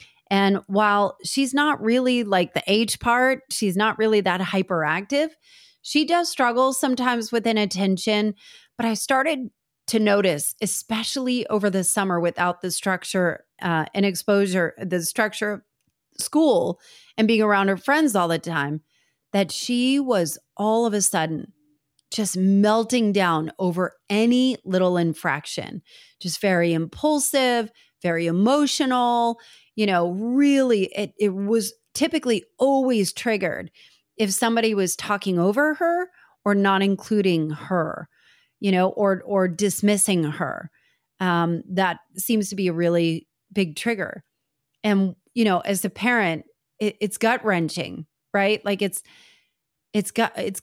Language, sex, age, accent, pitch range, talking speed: English, female, 30-49, American, 180-230 Hz, 135 wpm